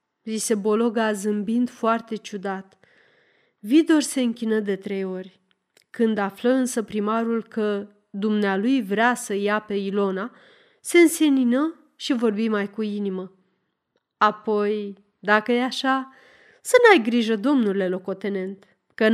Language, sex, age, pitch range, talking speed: Romanian, female, 30-49, 205-265 Hz, 120 wpm